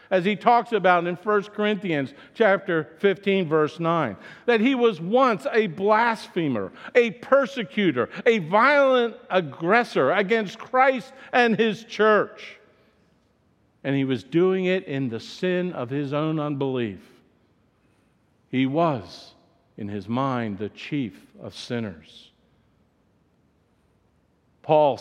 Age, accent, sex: 50-69, American, male